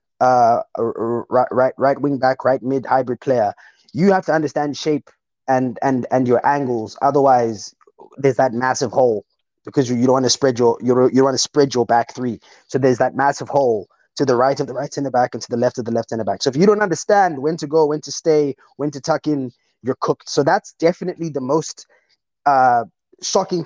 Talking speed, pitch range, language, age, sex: 220 wpm, 130-160 Hz, English, 20-39, male